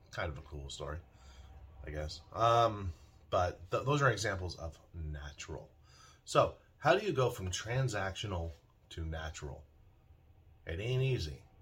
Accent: American